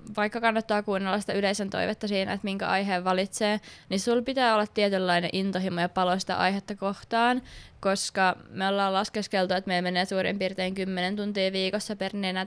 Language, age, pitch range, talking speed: Finnish, 20-39, 180-205 Hz, 175 wpm